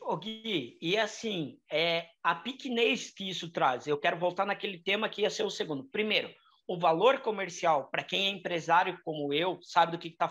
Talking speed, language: 205 wpm, Portuguese